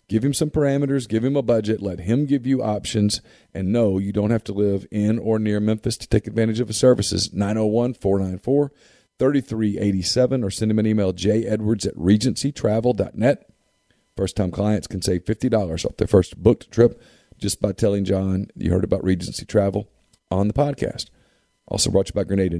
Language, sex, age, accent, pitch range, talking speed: English, male, 40-59, American, 95-115 Hz, 175 wpm